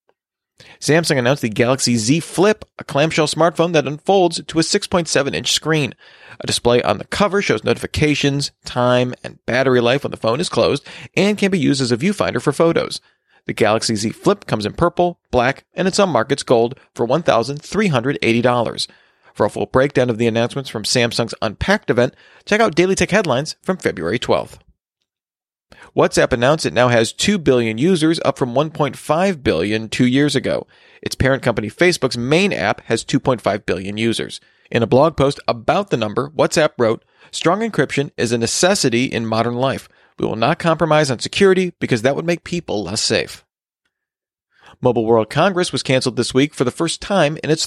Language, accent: English, American